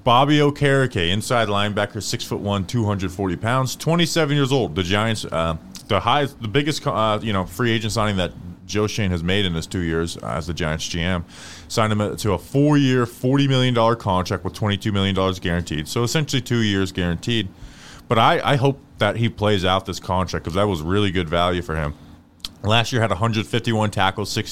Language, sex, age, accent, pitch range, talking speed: English, male, 20-39, American, 95-125 Hz, 220 wpm